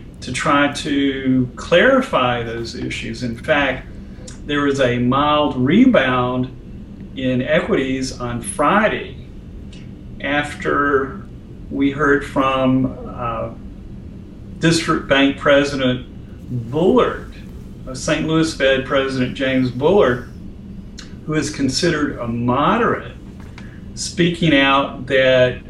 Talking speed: 95 wpm